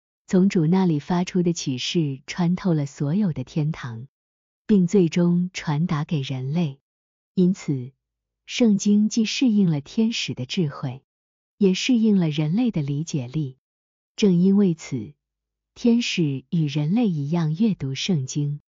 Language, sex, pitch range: Chinese, female, 145-195 Hz